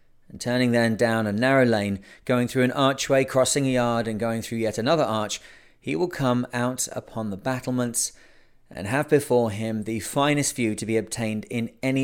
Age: 30-49